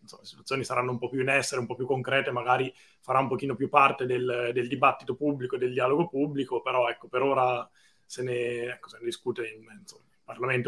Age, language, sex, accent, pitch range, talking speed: 20-39, Italian, male, native, 130-155 Hz, 220 wpm